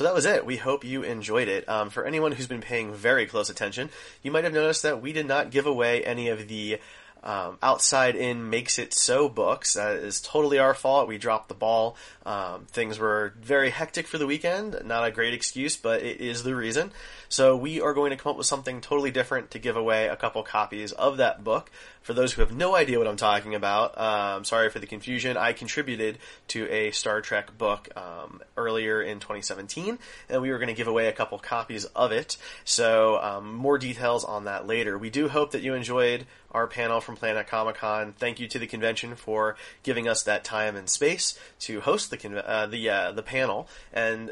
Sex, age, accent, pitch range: male, 30-49, American, 110-135 Hz